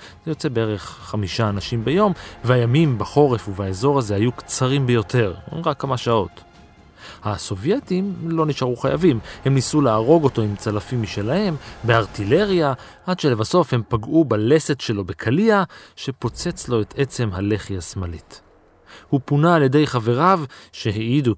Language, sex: Hebrew, male